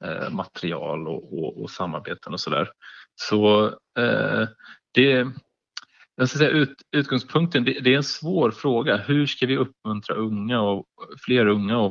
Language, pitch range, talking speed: Swedish, 90-120 Hz, 150 wpm